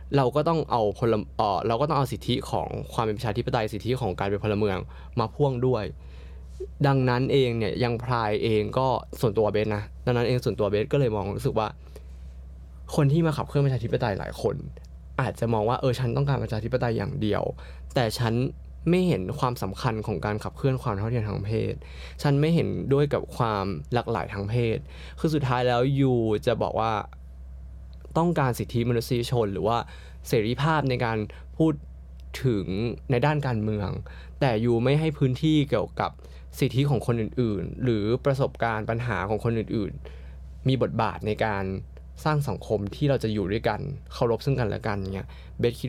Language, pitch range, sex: Thai, 100-130 Hz, male